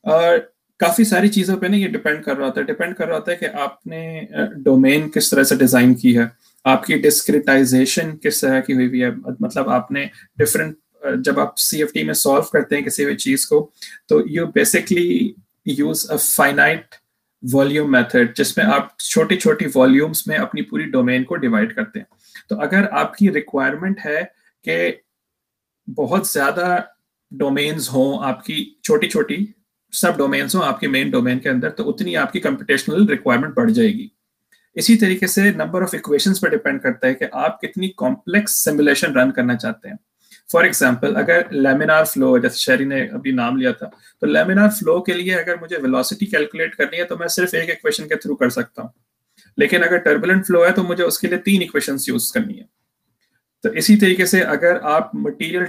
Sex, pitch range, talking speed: male, 150-225 Hz, 170 wpm